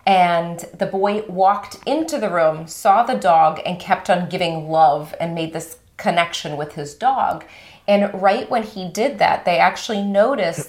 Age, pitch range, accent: 30-49, 165-200 Hz, American